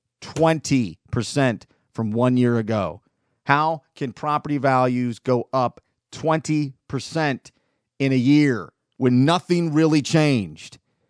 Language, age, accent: English, 40-59, American